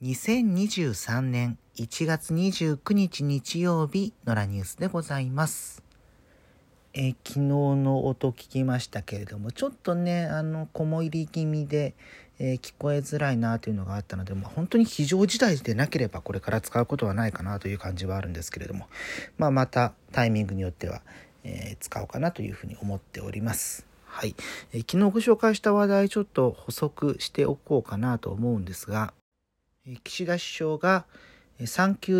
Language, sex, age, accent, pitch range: Japanese, male, 40-59, native, 105-155 Hz